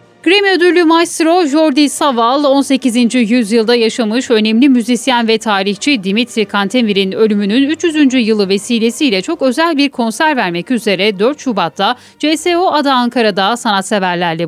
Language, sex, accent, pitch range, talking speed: Turkish, female, native, 200-285 Hz, 125 wpm